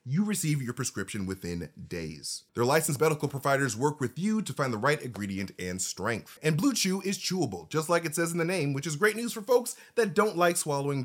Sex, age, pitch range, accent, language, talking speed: male, 30-49, 120-195 Hz, American, English, 230 wpm